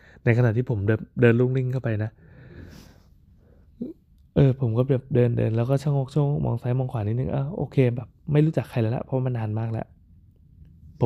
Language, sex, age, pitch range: Thai, male, 20-39, 95-125 Hz